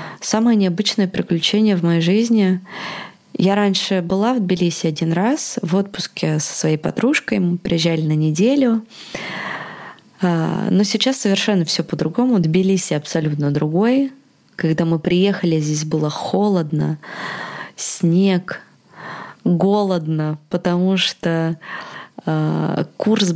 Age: 20-39